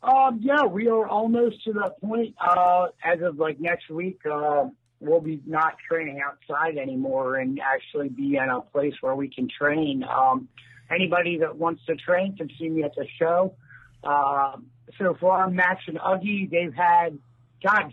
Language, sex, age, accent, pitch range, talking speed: English, male, 50-69, American, 140-185 Hz, 175 wpm